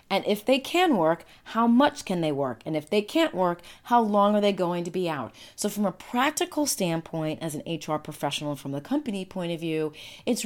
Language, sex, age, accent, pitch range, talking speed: English, female, 30-49, American, 155-205 Hz, 225 wpm